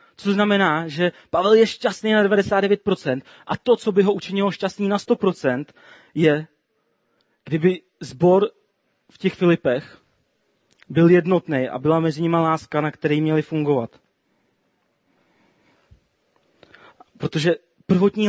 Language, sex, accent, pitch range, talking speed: Czech, male, native, 160-195 Hz, 120 wpm